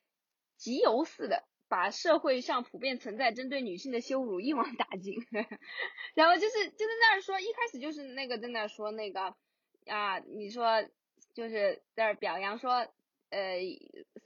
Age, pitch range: 20-39, 245-375 Hz